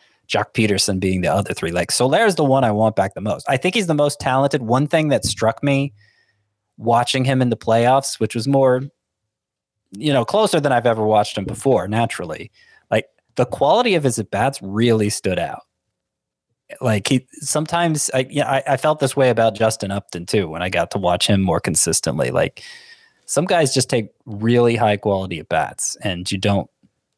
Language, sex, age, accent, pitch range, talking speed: English, male, 20-39, American, 100-130 Hz, 195 wpm